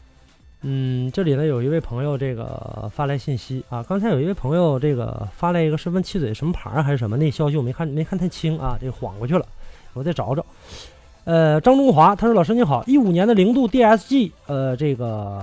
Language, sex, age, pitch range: Chinese, male, 20-39, 120-185 Hz